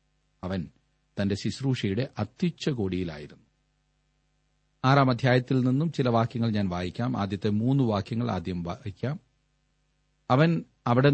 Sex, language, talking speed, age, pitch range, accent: male, Malayalam, 95 wpm, 40-59, 105-140 Hz, native